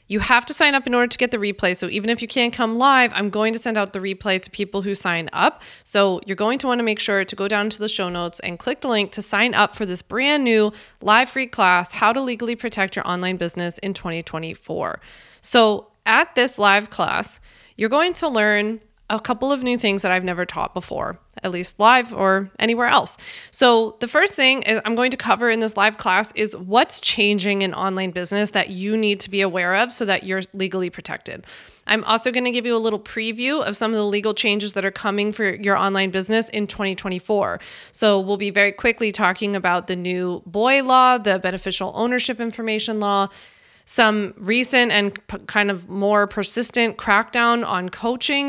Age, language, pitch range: 30-49, English, 195-240 Hz